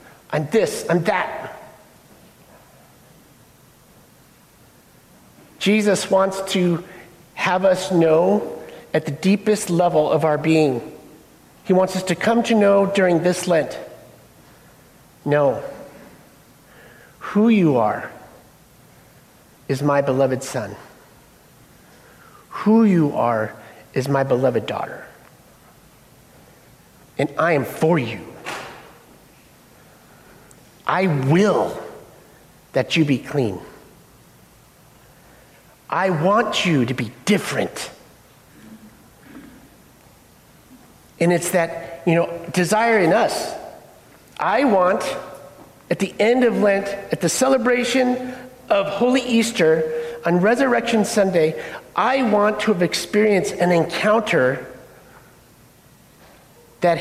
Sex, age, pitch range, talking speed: male, 50-69, 160-210 Hz, 95 wpm